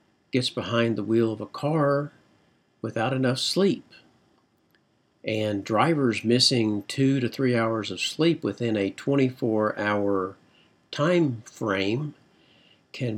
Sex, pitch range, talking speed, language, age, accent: male, 105-120 Hz, 115 wpm, English, 50-69, American